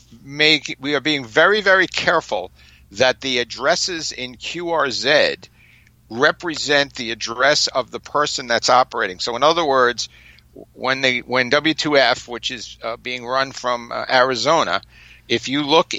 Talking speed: 145 wpm